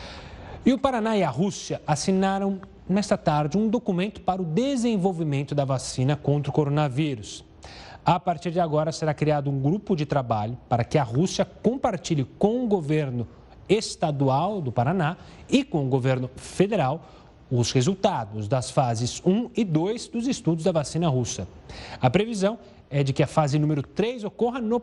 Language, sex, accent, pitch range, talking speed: Portuguese, male, Brazilian, 140-195 Hz, 165 wpm